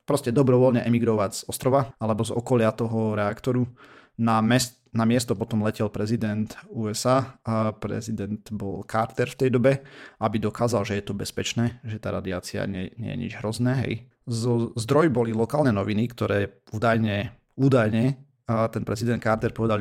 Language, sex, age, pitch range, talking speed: Slovak, male, 30-49, 105-120 Hz, 155 wpm